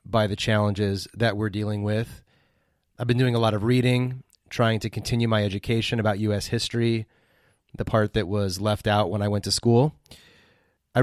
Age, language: 30-49, English